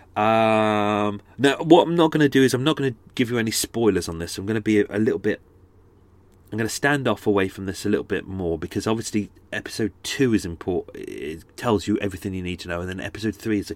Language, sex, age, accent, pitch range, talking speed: English, male, 30-49, British, 100-140 Hz, 255 wpm